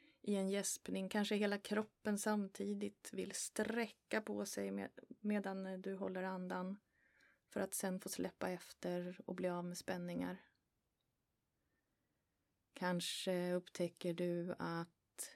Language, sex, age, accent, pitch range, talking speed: Swedish, female, 30-49, native, 175-200 Hz, 115 wpm